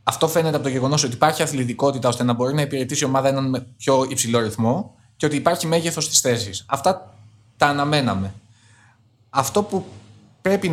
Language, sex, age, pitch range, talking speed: Greek, male, 20-39, 115-170 Hz, 175 wpm